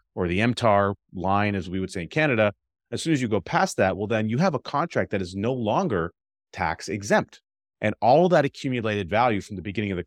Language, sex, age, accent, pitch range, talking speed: English, male, 30-49, American, 90-115 Hz, 230 wpm